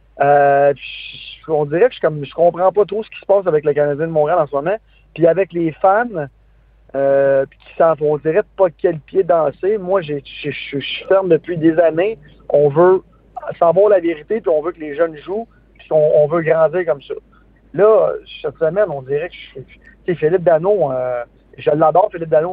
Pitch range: 145-185 Hz